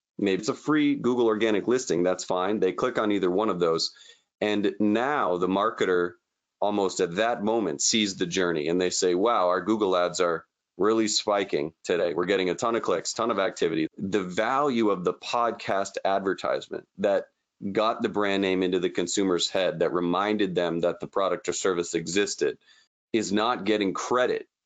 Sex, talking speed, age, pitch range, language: male, 185 wpm, 30-49, 90-110 Hz, English